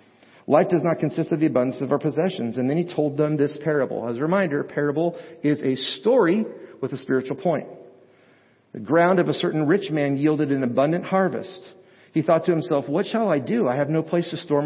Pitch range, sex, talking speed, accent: 130-180 Hz, male, 220 wpm, American